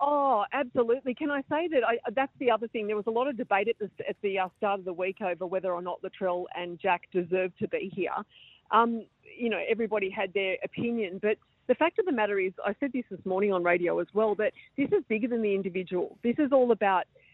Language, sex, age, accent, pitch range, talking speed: English, female, 40-59, Australian, 185-225 Hz, 235 wpm